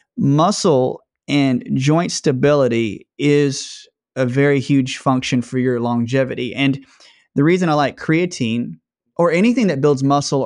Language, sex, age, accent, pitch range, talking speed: English, male, 30-49, American, 125-150 Hz, 130 wpm